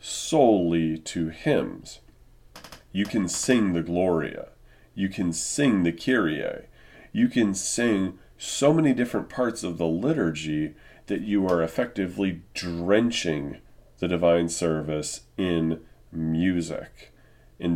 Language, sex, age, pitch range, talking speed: English, male, 40-59, 80-95 Hz, 115 wpm